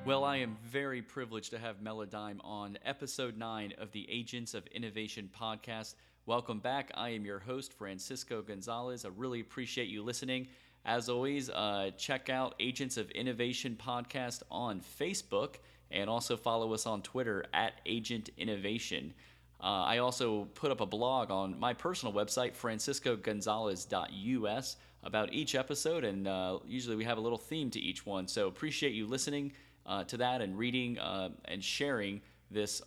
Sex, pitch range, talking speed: male, 105-125 Hz, 160 wpm